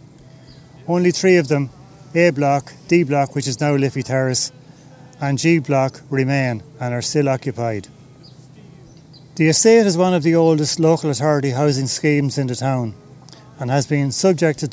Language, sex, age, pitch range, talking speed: English, male, 30-49, 130-150 Hz, 160 wpm